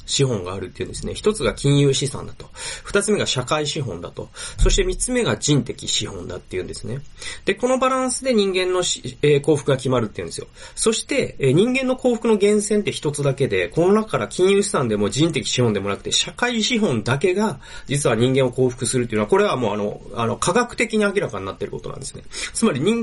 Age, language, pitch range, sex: 30-49, Japanese, 125-205 Hz, male